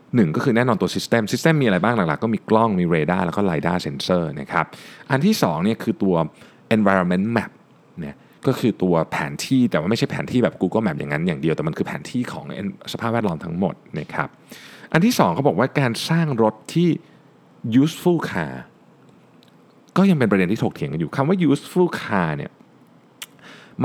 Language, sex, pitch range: Thai, male, 100-160 Hz